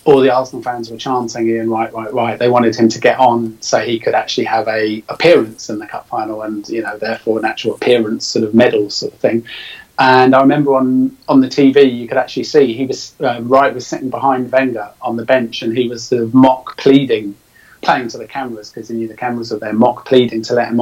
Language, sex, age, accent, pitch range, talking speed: English, male, 30-49, British, 115-130 Hz, 245 wpm